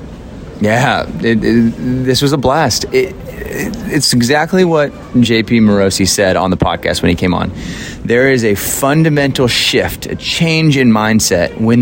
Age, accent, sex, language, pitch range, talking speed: 30-49, American, male, English, 100-140 Hz, 160 wpm